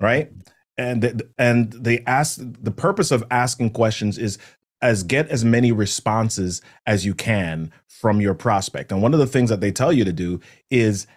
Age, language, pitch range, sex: 30-49, English, 105-130 Hz, male